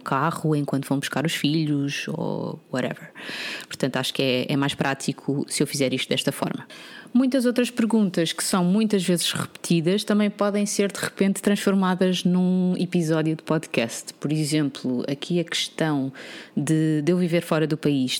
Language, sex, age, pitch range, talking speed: Portuguese, female, 20-39, 145-185 Hz, 170 wpm